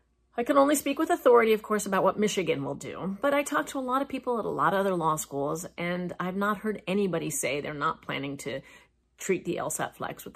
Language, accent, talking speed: English, American, 250 wpm